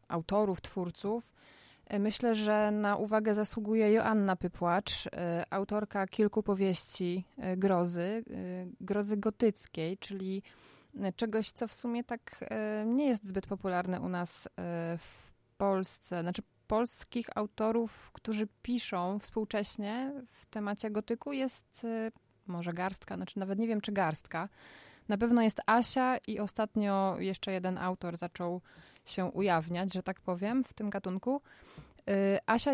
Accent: native